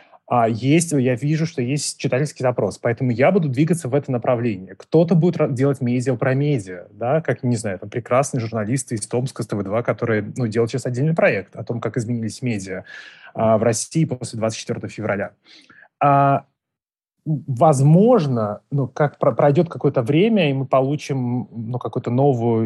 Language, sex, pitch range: Russian, male, 120-145 Hz